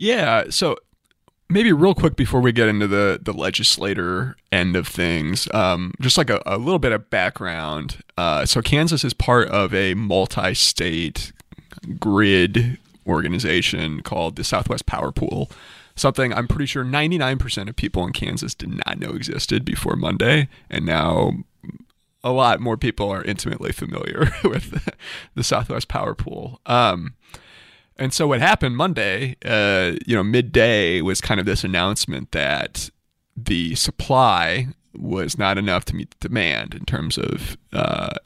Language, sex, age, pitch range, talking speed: English, male, 30-49, 95-130 Hz, 155 wpm